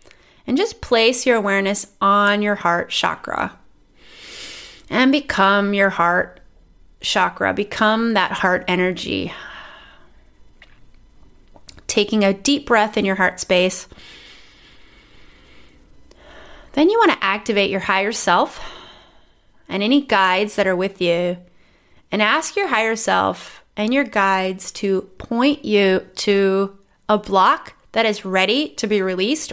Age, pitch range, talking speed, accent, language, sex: 30-49, 195-230 Hz, 125 wpm, American, English, female